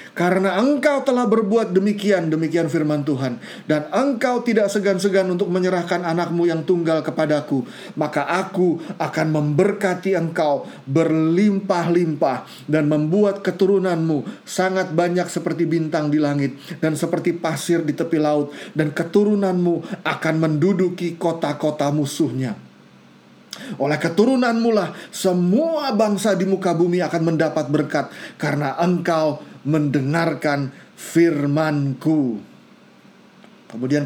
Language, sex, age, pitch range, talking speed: Indonesian, male, 30-49, 155-200 Hz, 105 wpm